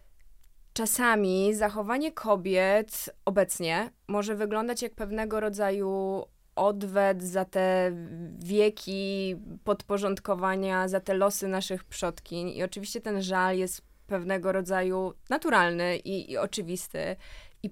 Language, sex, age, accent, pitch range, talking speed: Polish, female, 20-39, native, 190-225 Hz, 105 wpm